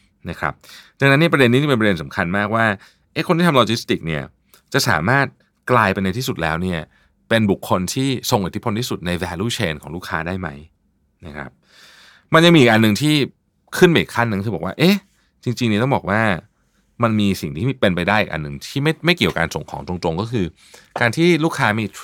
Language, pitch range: Thai, 85-125 Hz